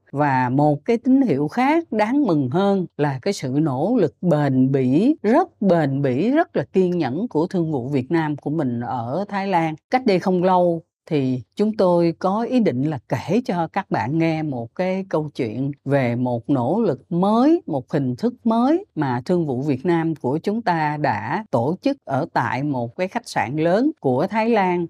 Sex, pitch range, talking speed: female, 145-205 Hz, 200 wpm